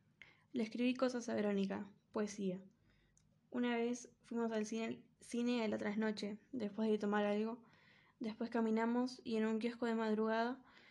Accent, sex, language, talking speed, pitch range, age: Argentinian, female, Spanish, 150 wpm, 205-235 Hz, 10-29